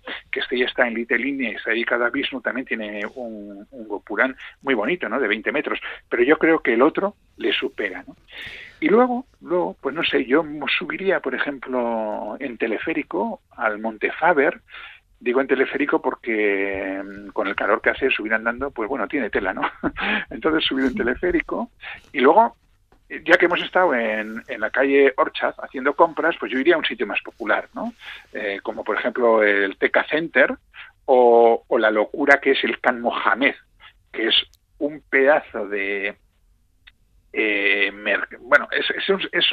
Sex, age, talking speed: male, 50-69, 175 wpm